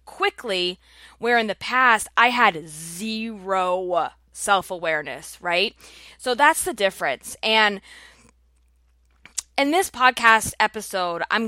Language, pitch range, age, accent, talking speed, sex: English, 175-215 Hz, 20-39, American, 105 wpm, female